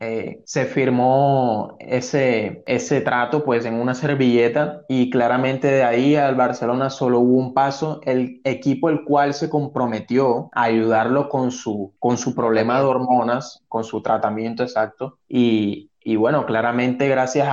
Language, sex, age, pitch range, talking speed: Spanish, male, 20-39, 120-145 Hz, 145 wpm